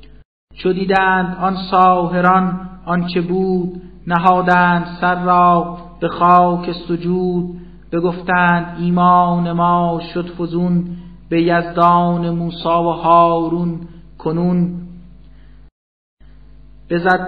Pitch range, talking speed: 170-180 Hz, 90 wpm